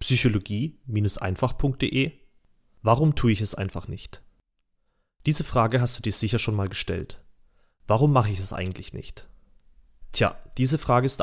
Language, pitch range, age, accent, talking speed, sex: German, 100-130 Hz, 30-49, German, 140 wpm, male